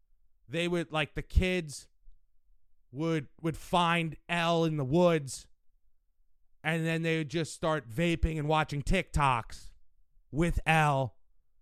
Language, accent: English, American